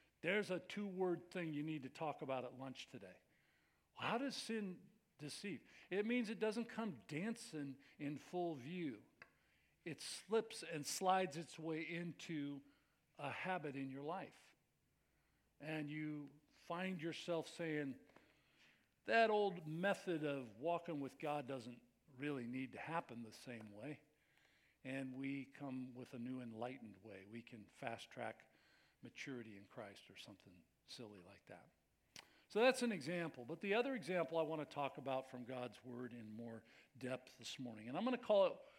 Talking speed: 160 wpm